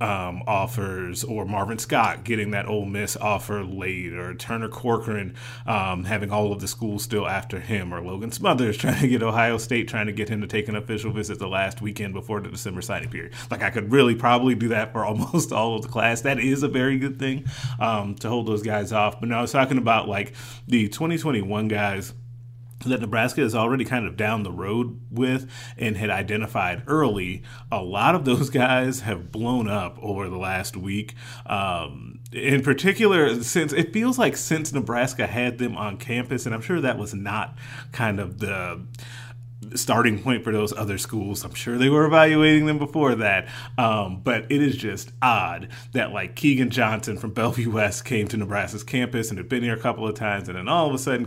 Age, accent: 30-49, American